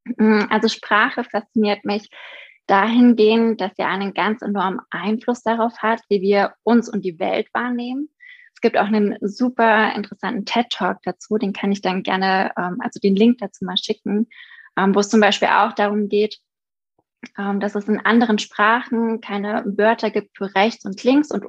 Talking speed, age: 165 wpm, 20-39